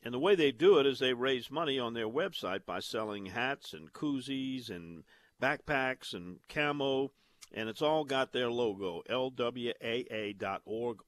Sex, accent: male, American